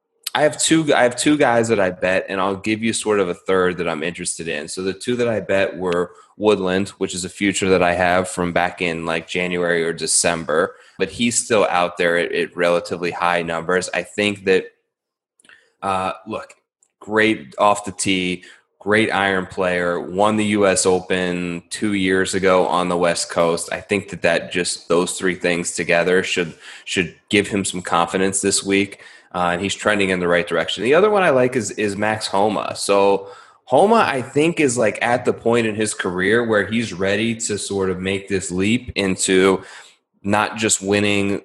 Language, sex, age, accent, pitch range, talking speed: English, male, 20-39, American, 90-105 Hz, 195 wpm